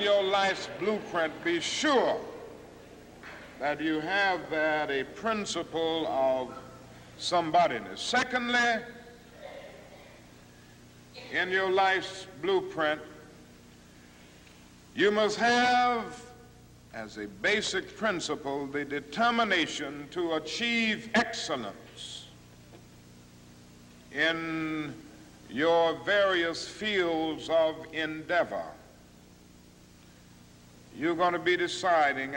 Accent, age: American, 60-79